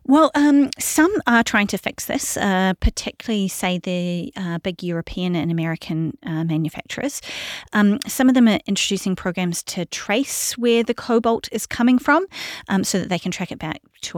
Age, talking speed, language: 30-49, 180 wpm, English